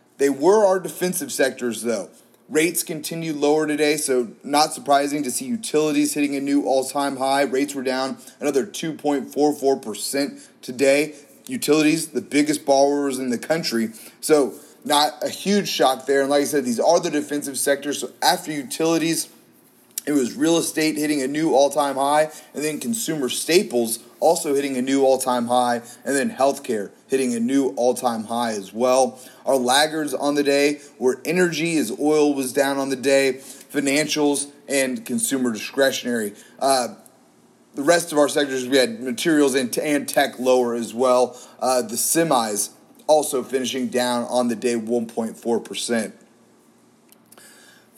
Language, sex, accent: English, male, American